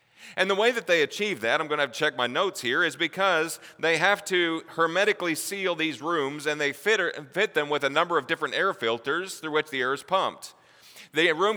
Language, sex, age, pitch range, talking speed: English, male, 40-59, 130-165 Hz, 235 wpm